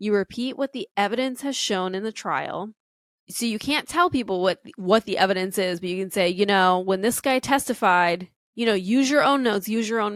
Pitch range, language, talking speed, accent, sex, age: 180-220 Hz, English, 230 wpm, American, female, 10-29